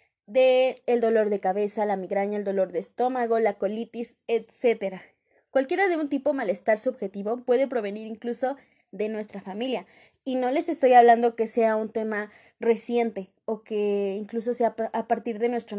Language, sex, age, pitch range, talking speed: Spanish, female, 20-39, 215-260 Hz, 165 wpm